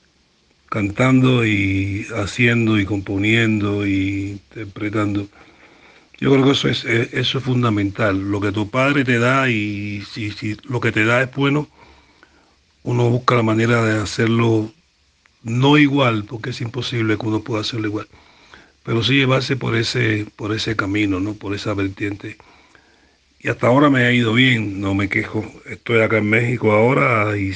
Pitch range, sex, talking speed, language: 105-120 Hz, male, 160 wpm, Spanish